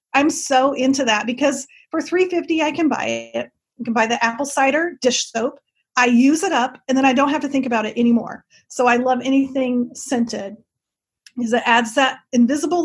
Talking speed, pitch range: 200 wpm, 235-290 Hz